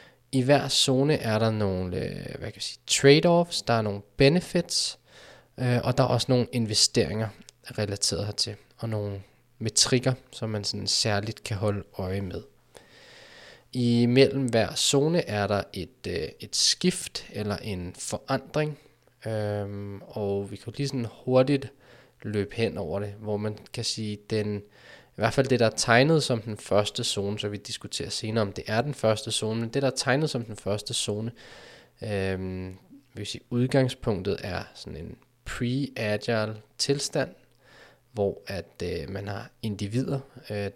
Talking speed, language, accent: 160 wpm, Danish, native